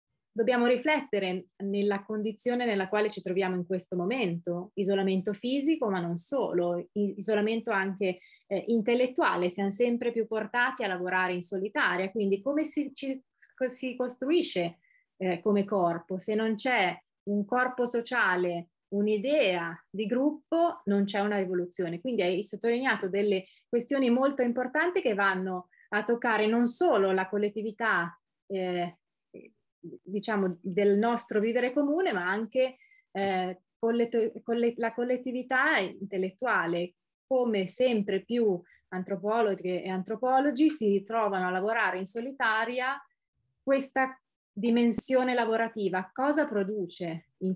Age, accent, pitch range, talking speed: 30-49, native, 185-245 Hz, 120 wpm